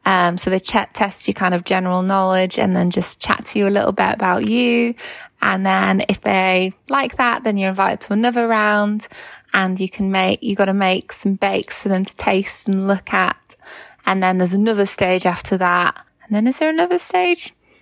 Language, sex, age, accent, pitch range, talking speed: English, female, 20-39, British, 190-245 Hz, 210 wpm